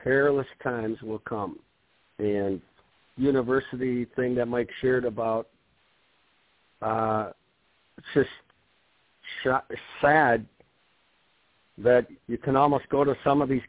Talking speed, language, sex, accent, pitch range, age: 110 wpm, English, male, American, 110-130 Hz, 50-69